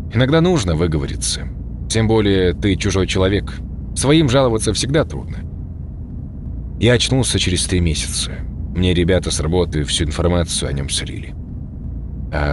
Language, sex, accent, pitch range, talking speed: Russian, male, native, 75-110 Hz, 130 wpm